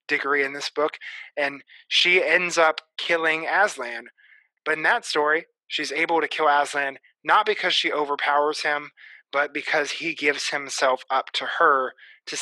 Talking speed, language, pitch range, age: 160 wpm, English, 135-155 Hz, 20-39